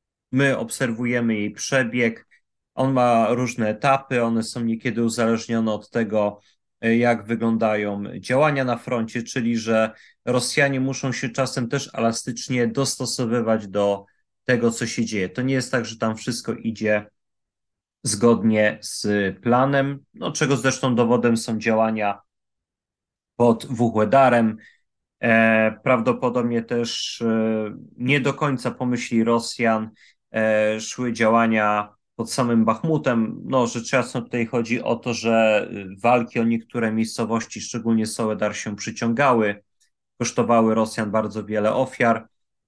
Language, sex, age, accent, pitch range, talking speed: Polish, male, 30-49, native, 110-125 Hz, 120 wpm